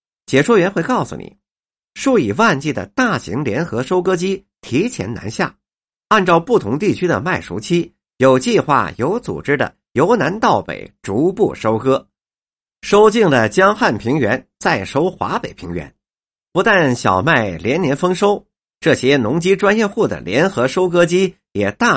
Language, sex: Chinese, male